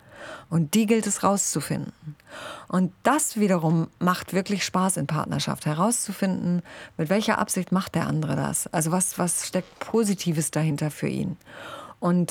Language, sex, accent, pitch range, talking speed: German, female, German, 160-190 Hz, 145 wpm